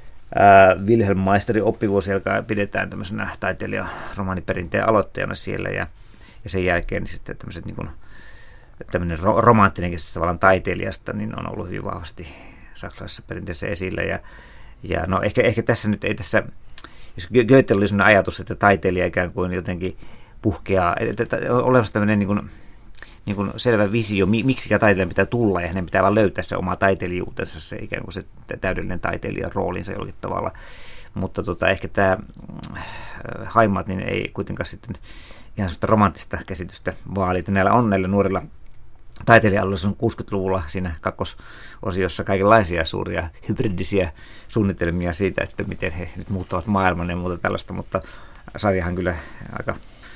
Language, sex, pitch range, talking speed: Finnish, male, 90-105 Hz, 150 wpm